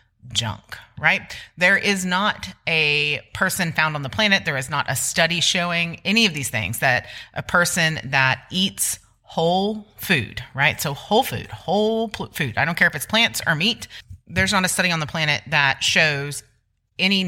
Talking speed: 185 wpm